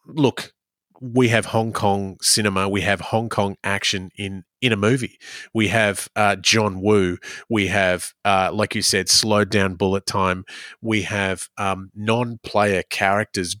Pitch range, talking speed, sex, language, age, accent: 100-120 Hz, 155 wpm, male, English, 30-49, Australian